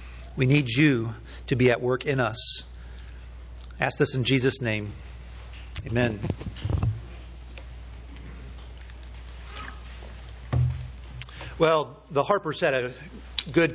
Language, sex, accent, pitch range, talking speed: English, male, American, 110-165 Hz, 95 wpm